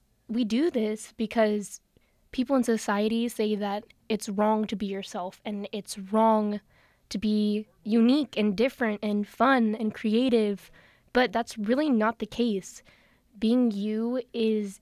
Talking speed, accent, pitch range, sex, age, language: 140 wpm, American, 210-235 Hz, female, 10-29, English